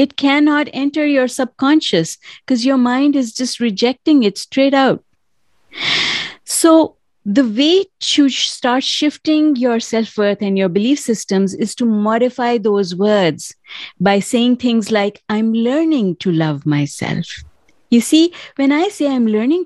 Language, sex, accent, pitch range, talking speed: English, female, Indian, 195-275 Hz, 145 wpm